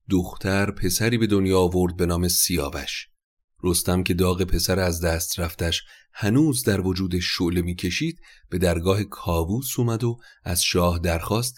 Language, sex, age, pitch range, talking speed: Persian, male, 30-49, 85-105 Hz, 145 wpm